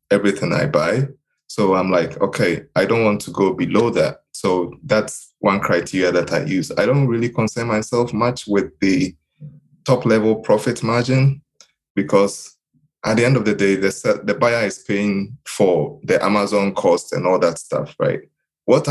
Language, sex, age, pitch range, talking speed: English, male, 20-39, 95-115 Hz, 175 wpm